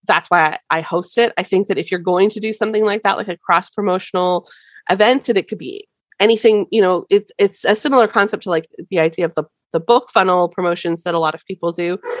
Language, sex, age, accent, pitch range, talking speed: English, female, 20-39, American, 180-245 Hz, 245 wpm